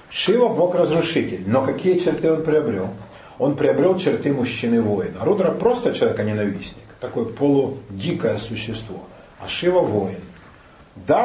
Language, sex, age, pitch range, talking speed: Russian, male, 40-59, 105-135 Hz, 115 wpm